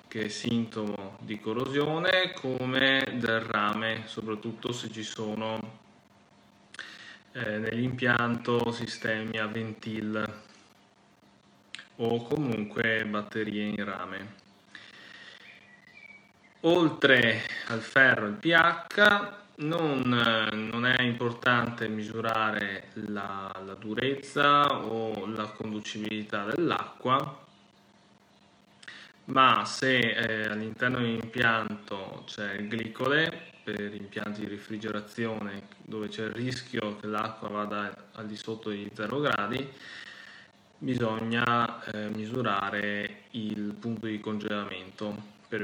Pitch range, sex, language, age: 105-120 Hz, male, Italian, 20-39